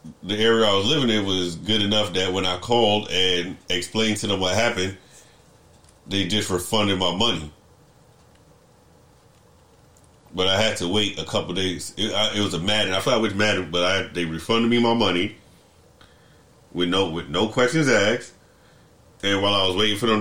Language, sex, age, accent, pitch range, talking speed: English, male, 30-49, American, 90-115 Hz, 185 wpm